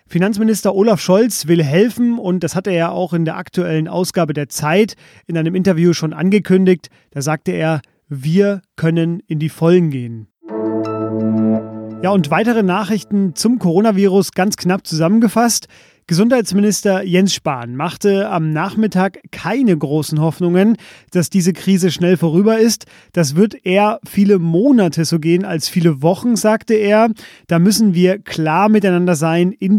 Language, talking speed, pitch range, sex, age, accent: German, 150 wpm, 165-205 Hz, male, 30-49, German